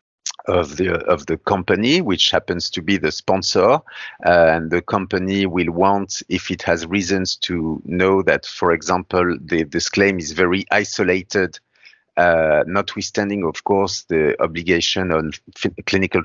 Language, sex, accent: English, male, French